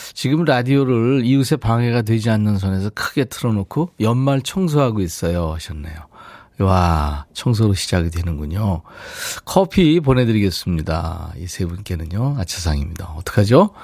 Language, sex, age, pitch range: Korean, male, 40-59, 95-145 Hz